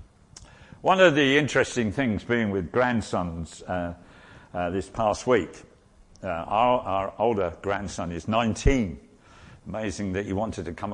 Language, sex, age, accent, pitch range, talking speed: English, male, 50-69, British, 100-155 Hz, 145 wpm